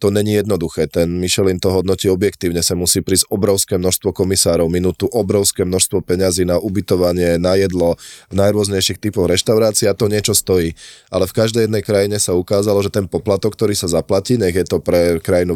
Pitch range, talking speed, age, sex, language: 90-110 Hz, 185 wpm, 20-39, male, Slovak